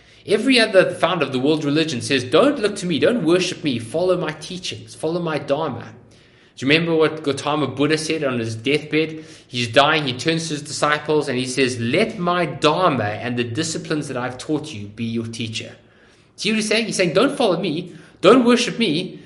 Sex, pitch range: male, 120-175 Hz